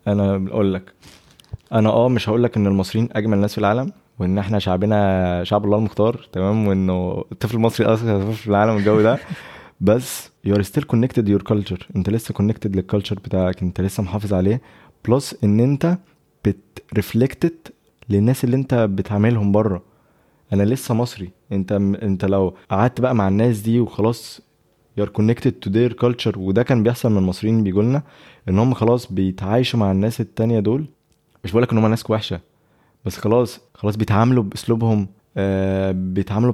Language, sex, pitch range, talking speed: English, male, 100-120 Hz, 145 wpm